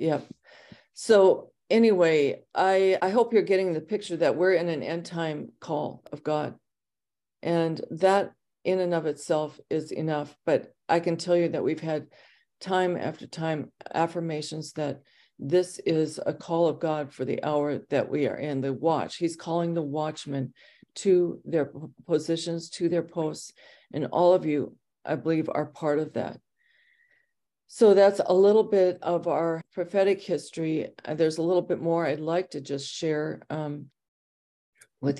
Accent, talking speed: American, 165 wpm